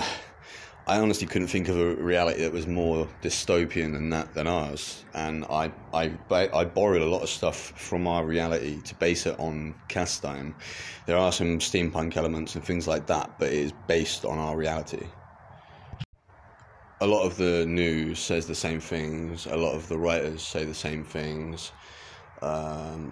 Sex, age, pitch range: male, 20-39, 80-90 Hz